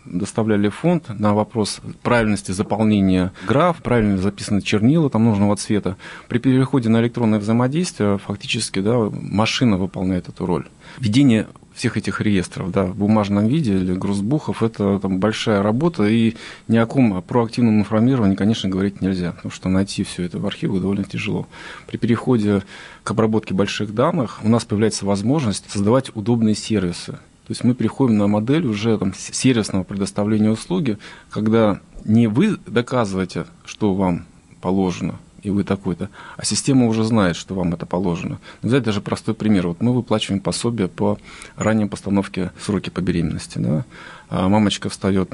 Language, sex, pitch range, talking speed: Russian, male, 100-115 Hz, 150 wpm